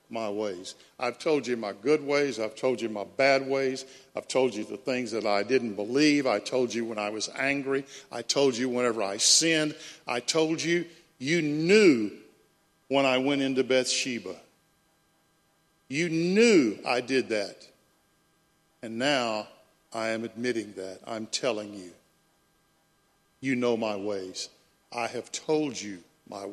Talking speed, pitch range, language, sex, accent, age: 155 wpm, 110-150 Hz, English, male, American, 50-69